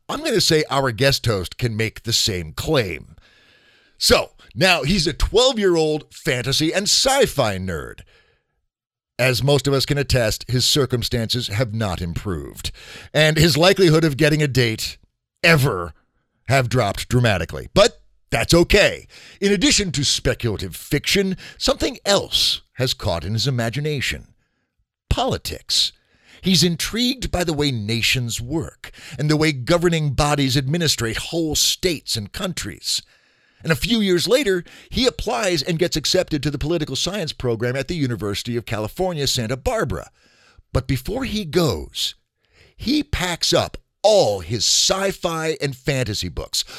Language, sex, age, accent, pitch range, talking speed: English, male, 50-69, American, 120-175 Hz, 140 wpm